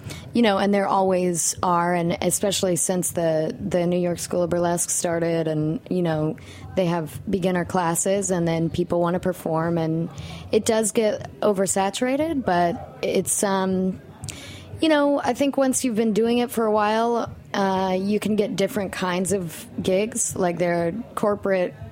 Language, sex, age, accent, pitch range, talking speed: English, female, 20-39, American, 165-195 Hz, 165 wpm